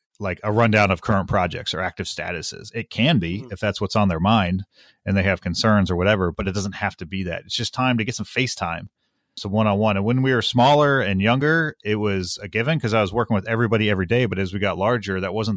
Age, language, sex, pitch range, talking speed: 30-49, English, male, 95-115 Hz, 260 wpm